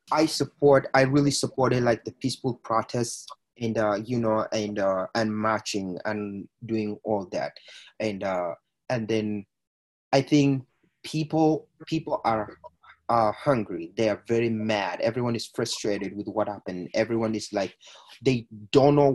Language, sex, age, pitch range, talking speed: English, male, 30-49, 110-135 Hz, 150 wpm